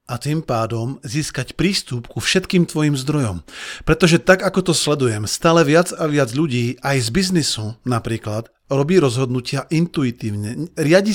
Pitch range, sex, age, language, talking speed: 125-170 Hz, male, 40-59, Slovak, 145 wpm